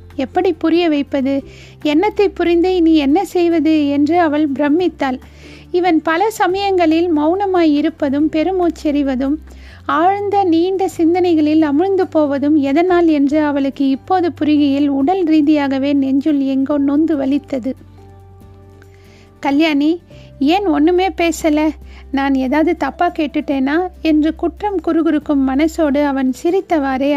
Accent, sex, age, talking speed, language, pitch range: native, female, 50-69, 100 wpm, Tamil, 280-340 Hz